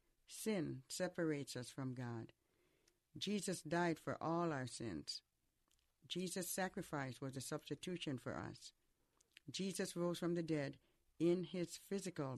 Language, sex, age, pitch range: English, female, 60-79, 135-175 Hz